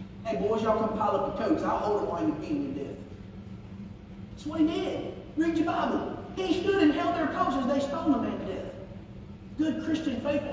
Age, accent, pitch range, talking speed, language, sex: 40-59, American, 215-295 Hz, 230 wpm, English, male